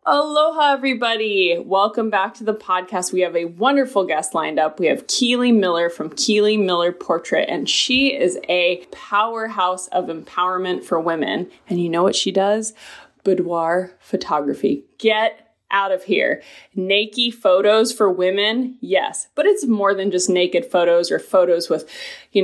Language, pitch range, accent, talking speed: English, 180-240 Hz, American, 160 wpm